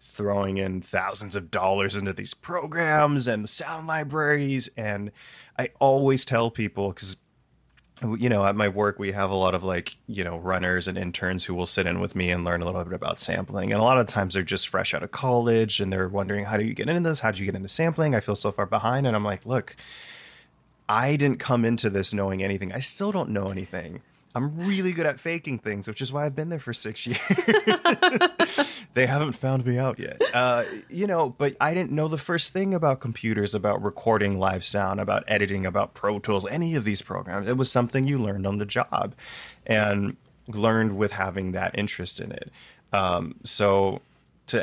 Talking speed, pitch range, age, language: 210 wpm, 100-130 Hz, 20-39, English